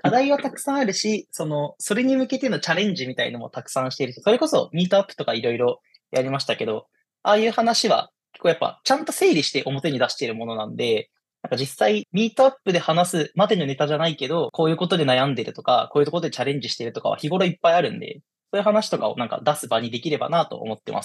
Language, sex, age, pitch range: Japanese, male, 20-39, 130-210 Hz